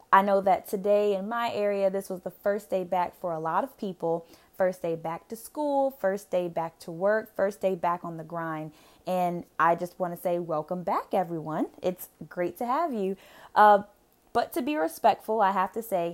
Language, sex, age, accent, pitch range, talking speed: English, female, 20-39, American, 175-205 Hz, 210 wpm